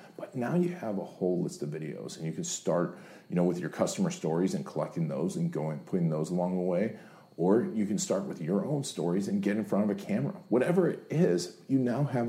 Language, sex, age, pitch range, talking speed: English, male, 40-59, 85-135 Hz, 245 wpm